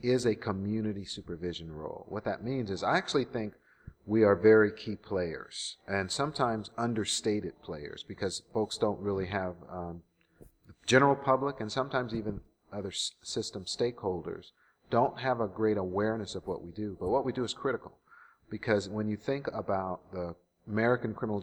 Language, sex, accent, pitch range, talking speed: English, male, American, 95-115 Hz, 165 wpm